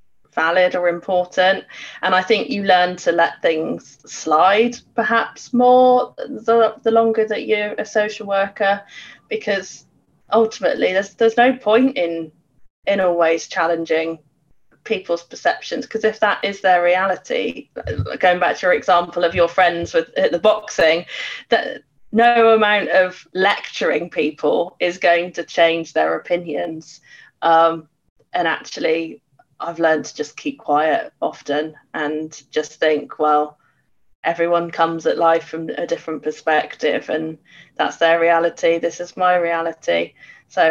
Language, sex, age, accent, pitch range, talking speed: English, female, 20-39, British, 165-220 Hz, 140 wpm